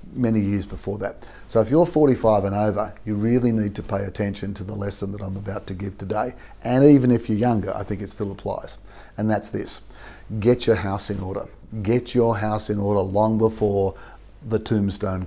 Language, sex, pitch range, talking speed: English, male, 95-110 Hz, 205 wpm